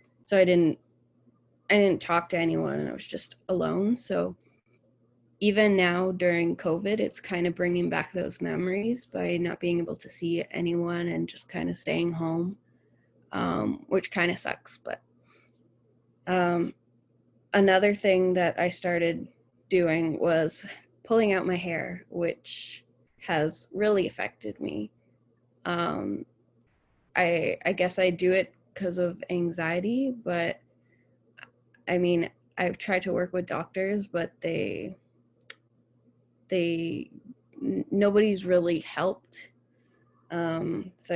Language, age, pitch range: English, 20-39, 120-185 Hz